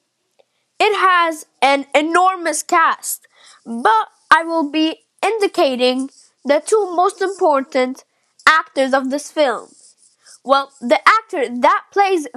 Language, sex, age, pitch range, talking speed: English, female, 10-29, 280-370 Hz, 110 wpm